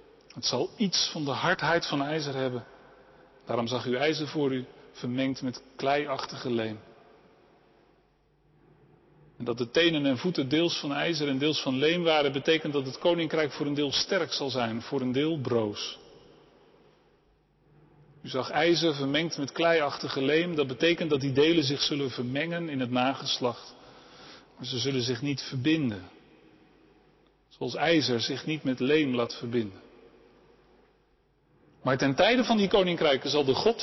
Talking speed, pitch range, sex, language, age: 155 wpm, 135-180 Hz, male, Dutch, 40-59